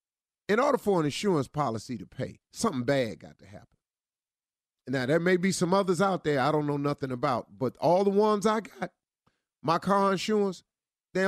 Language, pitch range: English, 145-195 Hz